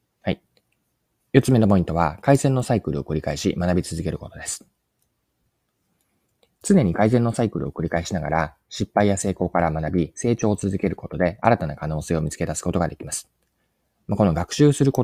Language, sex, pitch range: Japanese, male, 80-105 Hz